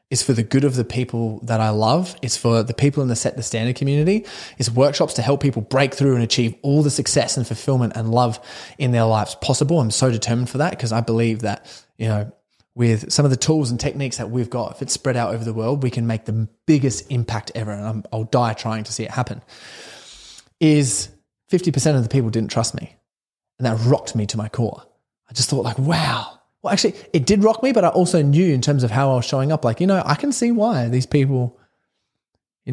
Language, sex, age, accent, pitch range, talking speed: English, male, 20-39, Australian, 115-150 Hz, 240 wpm